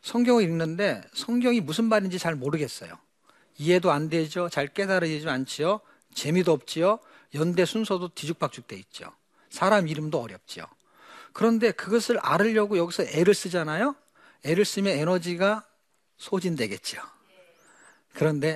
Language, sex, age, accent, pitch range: Korean, male, 40-59, native, 160-225 Hz